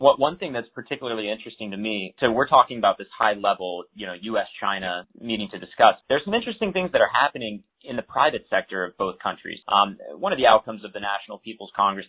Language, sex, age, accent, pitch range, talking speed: English, male, 30-49, American, 105-130 Hz, 230 wpm